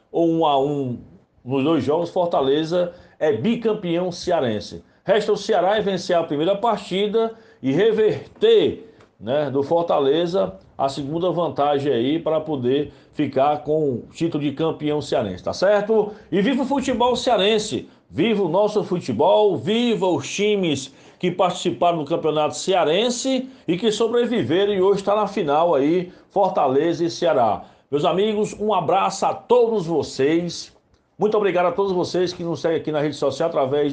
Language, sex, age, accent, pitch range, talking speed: Portuguese, male, 60-79, Brazilian, 150-205 Hz, 155 wpm